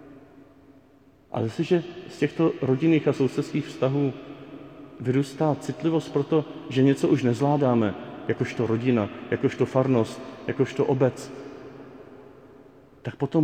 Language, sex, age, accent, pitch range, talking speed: Czech, male, 40-59, native, 135-170 Hz, 105 wpm